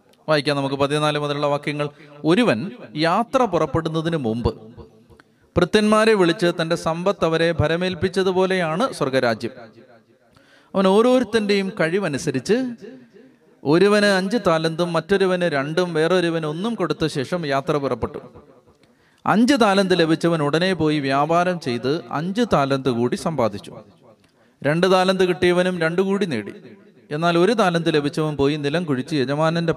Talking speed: 110 wpm